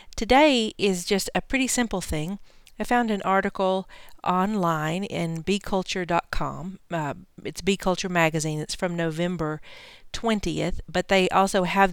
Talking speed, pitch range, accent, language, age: 135 wpm, 165-200 Hz, American, English, 50-69